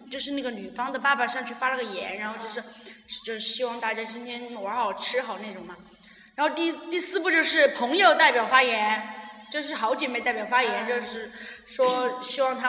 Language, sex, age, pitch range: Chinese, female, 20-39, 225-275 Hz